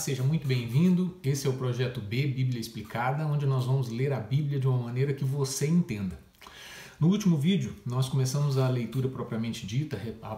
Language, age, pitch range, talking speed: Portuguese, 40-59, 125-155 Hz, 185 wpm